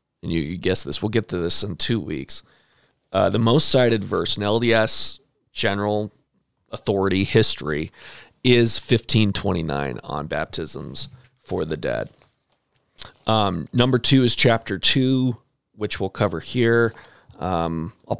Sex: male